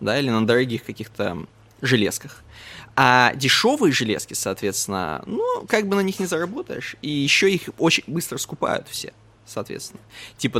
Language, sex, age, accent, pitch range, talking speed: Russian, male, 20-39, native, 110-145 Hz, 145 wpm